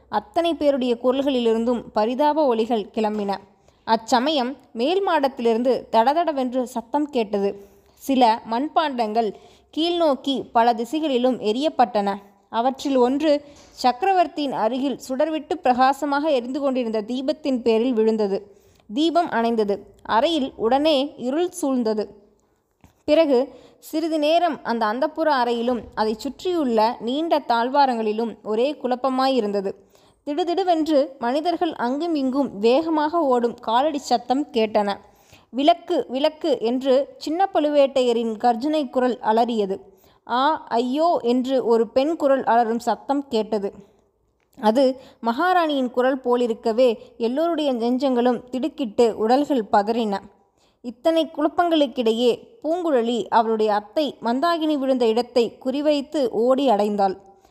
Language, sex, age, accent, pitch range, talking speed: Tamil, female, 20-39, native, 230-295 Hz, 95 wpm